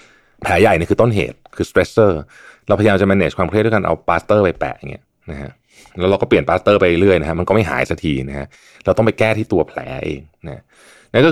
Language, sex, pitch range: Thai, male, 80-115 Hz